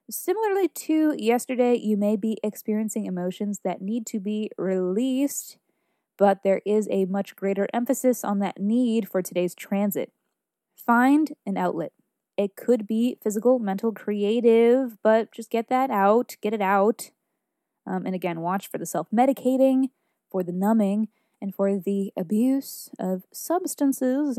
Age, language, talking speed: 20-39, English, 150 wpm